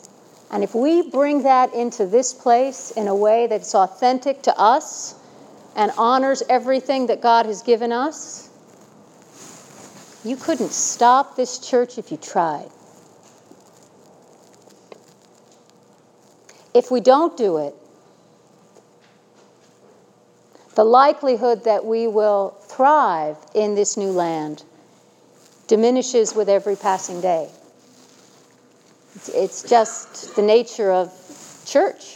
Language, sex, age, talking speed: English, female, 50-69, 105 wpm